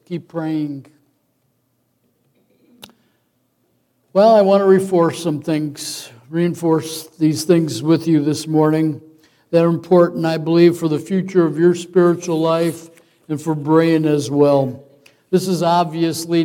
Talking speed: 130 wpm